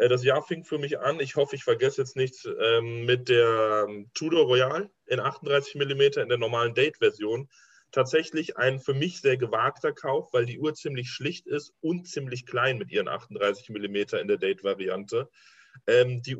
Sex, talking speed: male, 170 wpm